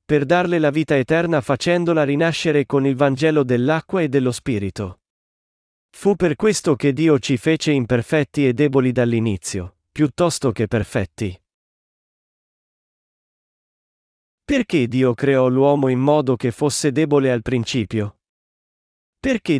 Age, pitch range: 40-59, 125-155 Hz